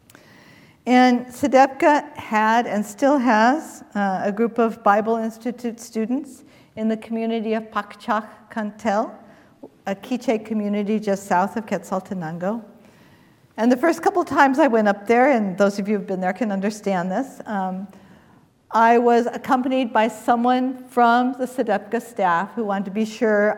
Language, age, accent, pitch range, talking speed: English, 50-69, American, 195-245 Hz, 150 wpm